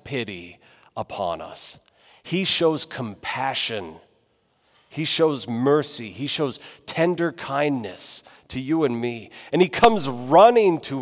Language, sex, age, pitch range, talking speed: English, male, 40-59, 125-185 Hz, 120 wpm